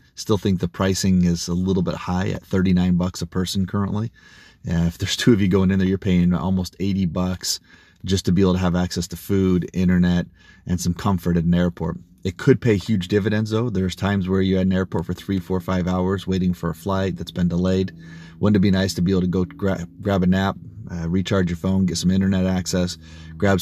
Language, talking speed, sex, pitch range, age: English, 235 wpm, male, 85-95 Hz, 30-49